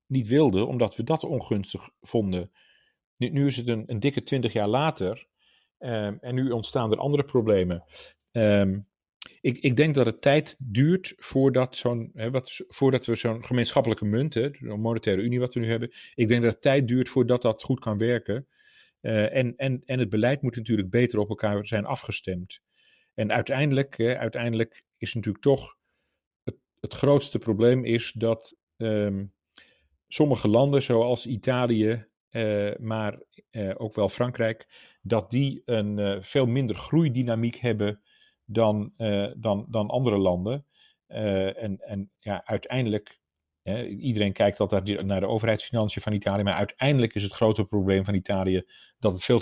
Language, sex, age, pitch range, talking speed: Dutch, male, 40-59, 105-130 Hz, 165 wpm